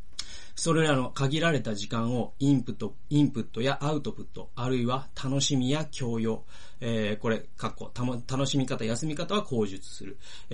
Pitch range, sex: 115-165 Hz, male